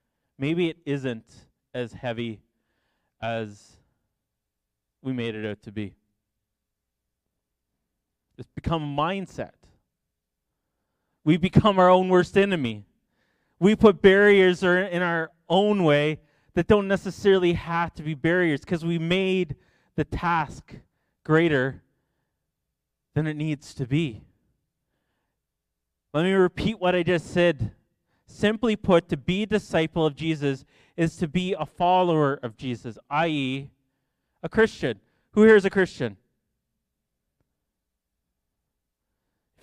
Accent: American